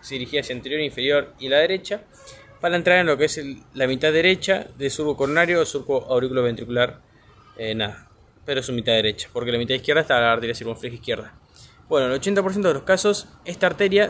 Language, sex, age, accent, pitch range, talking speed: Spanish, male, 20-39, Argentinian, 125-170 Hz, 210 wpm